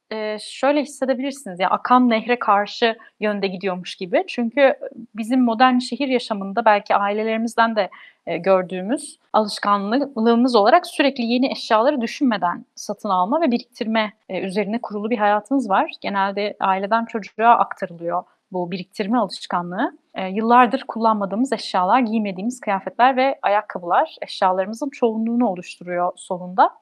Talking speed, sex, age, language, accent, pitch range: 120 wpm, female, 30-49, Turkish, native, 205-265 Hz